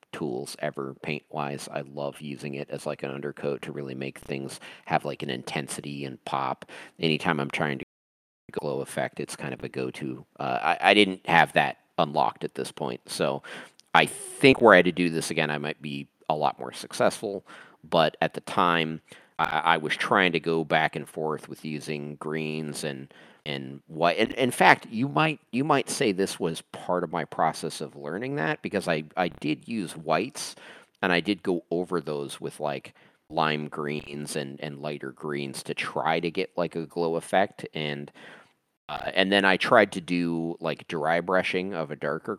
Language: English